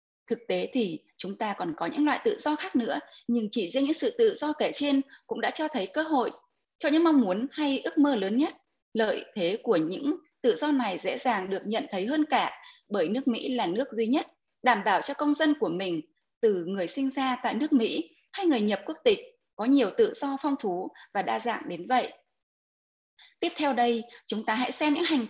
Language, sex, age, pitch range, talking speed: Vietnamese, female, 20-39, 235-310 Hz, 230 wpm